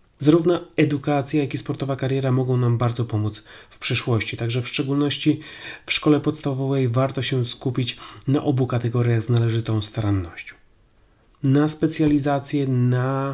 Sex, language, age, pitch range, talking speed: male, Polish, 30-49, 115-140 Hz, 135 wpm